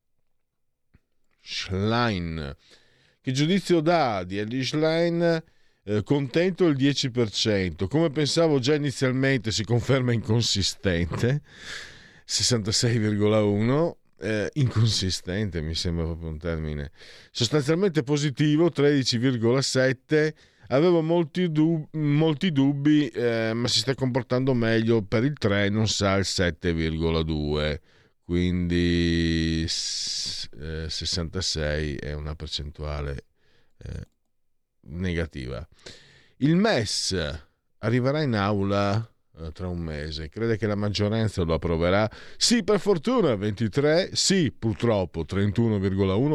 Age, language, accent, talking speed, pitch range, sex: 50-69, Italian, native, 100 wpm, 85-140 Hz, male